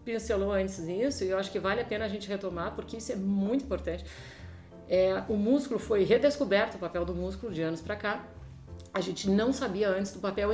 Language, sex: Portuguese, female